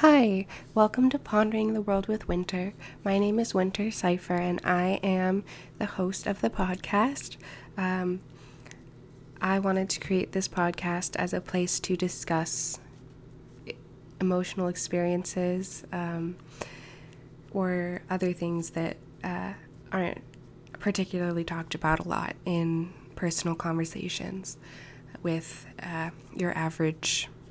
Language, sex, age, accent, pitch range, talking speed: English, female, 20-39, American, 145-180 Hz, 120 wpm